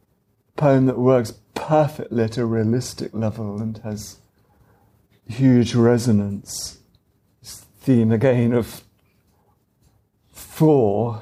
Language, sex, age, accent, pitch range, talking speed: English, male, 50-69, British, 105-135 Hz, 85 wpm